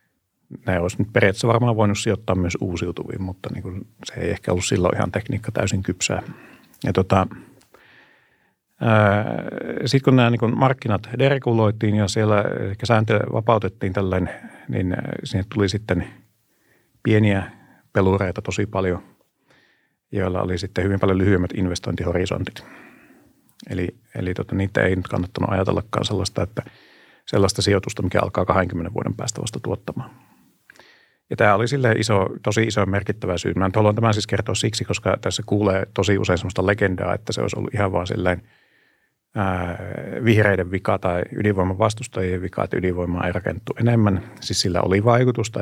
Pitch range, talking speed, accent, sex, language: 95-110 Hz, 140 wpm, native, male, Finnish